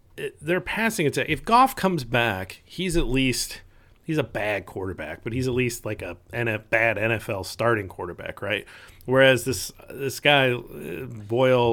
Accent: American